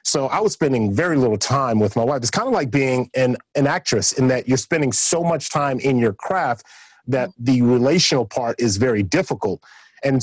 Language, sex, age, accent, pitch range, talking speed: English, male, 40-59, American, 120-145 Hz, 210 wpm